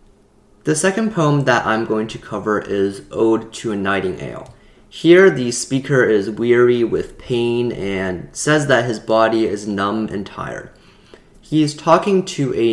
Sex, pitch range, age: male, 105-130 Hz, 20-39